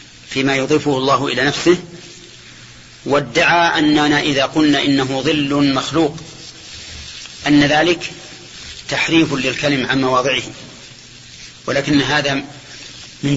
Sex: male